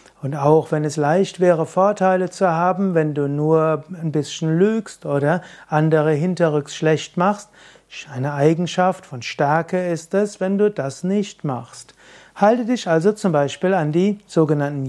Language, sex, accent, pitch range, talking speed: German, male, German, 150-185 Hz, 155 wpm